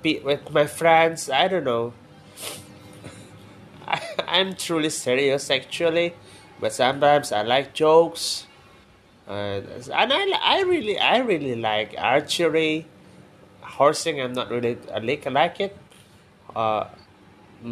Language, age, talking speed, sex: Indonesian, 20-39, 115 wpm, male